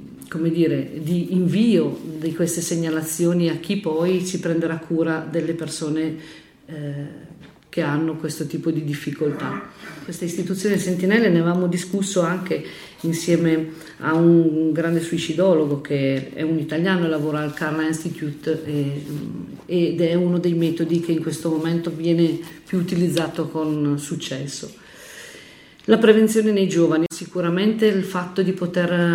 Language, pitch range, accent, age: Italian, 155-170 Hz, native, 50-69